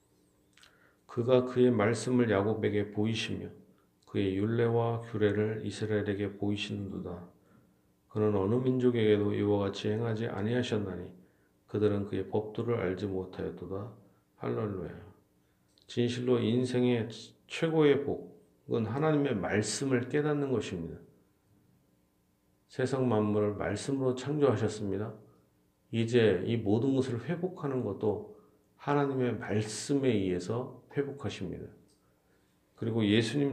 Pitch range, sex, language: 95-120 Hz, male, Korean